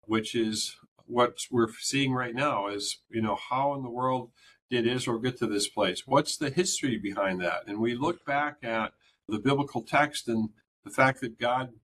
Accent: American